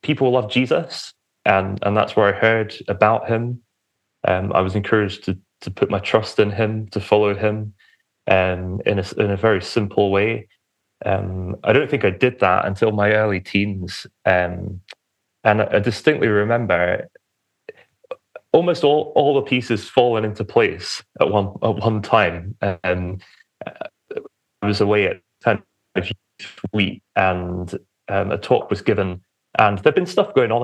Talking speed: 160 wpm